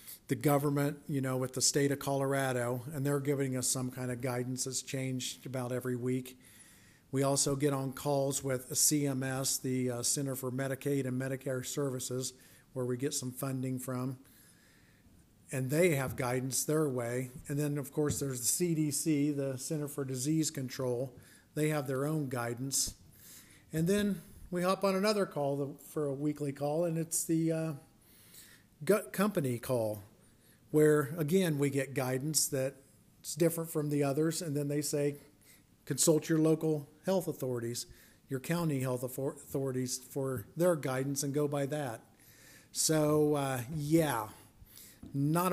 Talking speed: 155 wpm